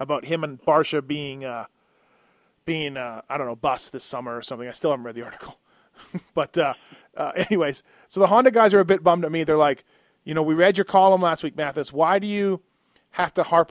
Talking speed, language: 230 wpm, English